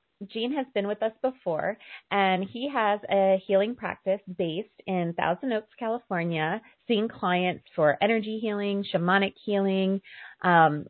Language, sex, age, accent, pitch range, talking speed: English, female, 30-49, American, 175-205 Hz, 140 wpm